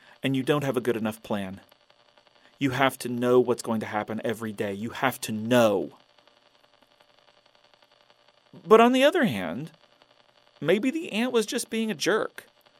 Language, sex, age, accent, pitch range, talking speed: English, male, 40-59, American, 120-190 Hz, 165 wpm